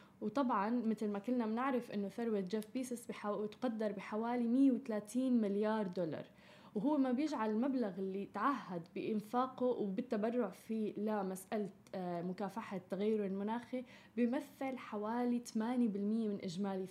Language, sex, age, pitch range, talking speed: Arabic, female, 10-29, 210-255 Hz, 115 wpm